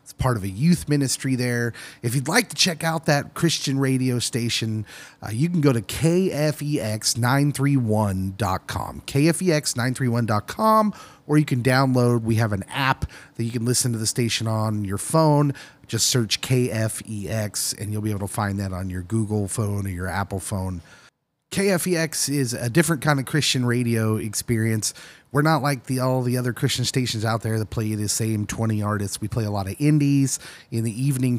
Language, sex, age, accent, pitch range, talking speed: English, male, 30-49, American, 110-145 Hz, 180 wpm